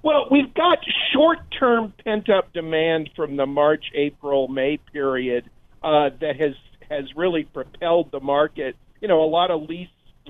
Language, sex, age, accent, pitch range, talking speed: English, male, 50-69, American, 140-175 Hz, 155 wpm